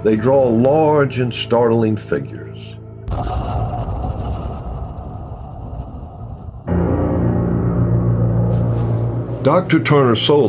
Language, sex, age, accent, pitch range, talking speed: English, male, 60-79, American, 95-130 Hz, 65 wpm